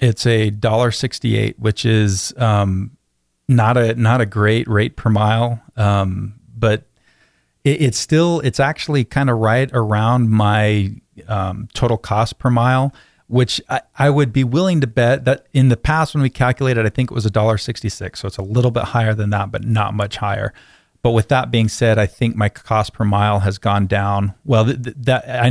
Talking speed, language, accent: 200 wpm, English, American